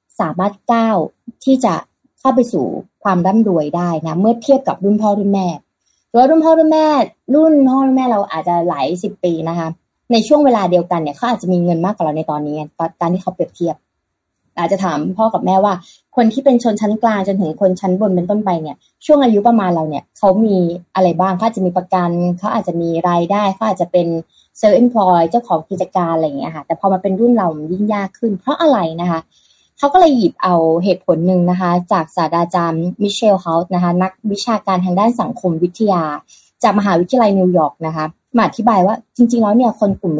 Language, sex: Thai, female